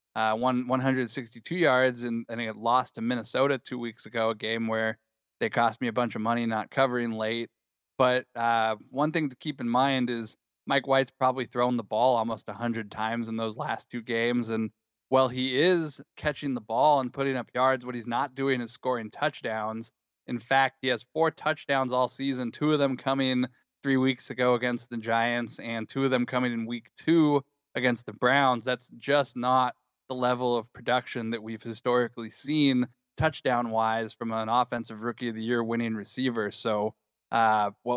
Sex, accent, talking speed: male, American, 195 wpm